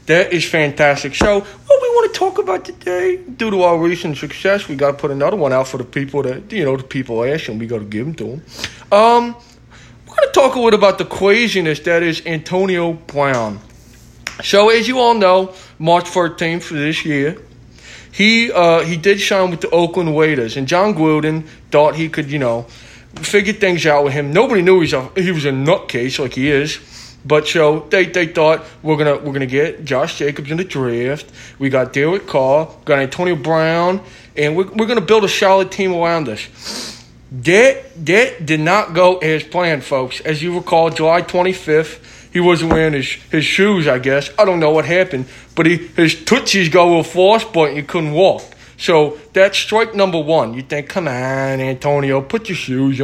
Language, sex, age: English, male, 20-39